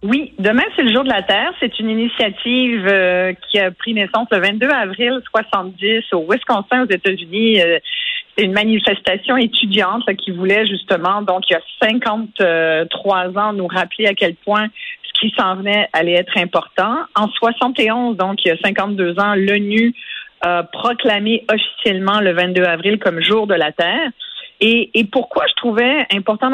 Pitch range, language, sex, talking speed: 185-235 Hz, French, female, 170 wpm